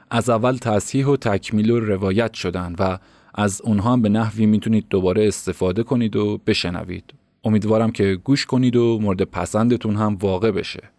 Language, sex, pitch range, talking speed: Persian, male, 100-125 Hz, 165 wpm